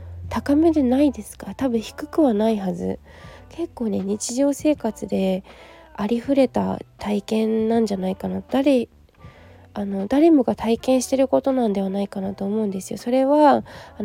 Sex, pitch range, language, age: female, 200-265 Hz, Japanese, 20-39